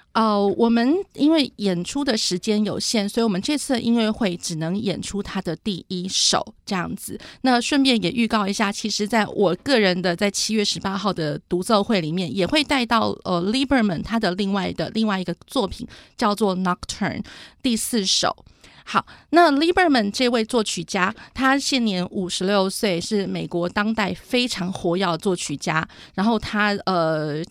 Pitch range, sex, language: 180-225 Hz, female, Chinese